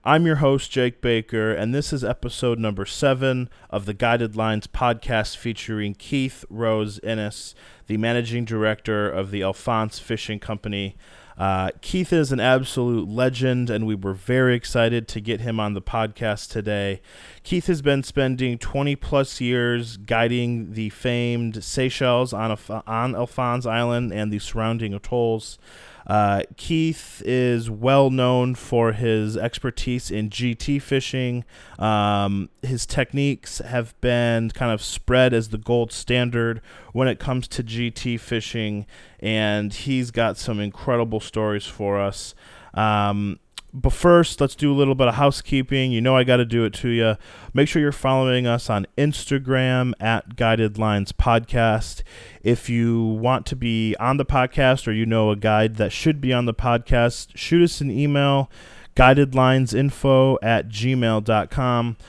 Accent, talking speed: American, 150 wpm